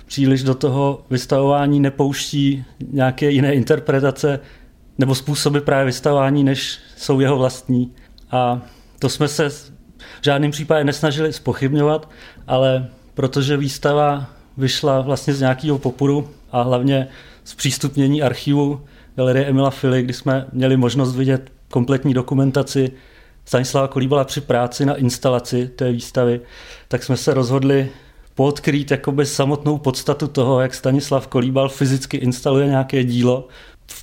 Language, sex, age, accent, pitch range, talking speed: Czech, male, 30-49, native, 130-145 Hz, 130 wpm